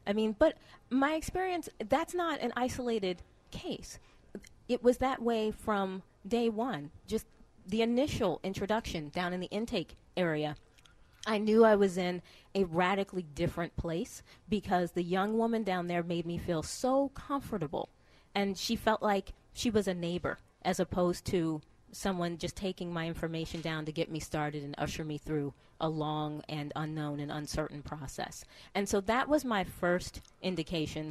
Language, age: English, 30-49